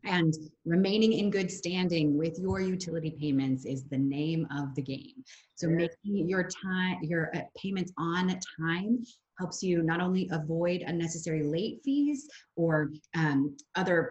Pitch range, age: 150-185 Hz, 30-49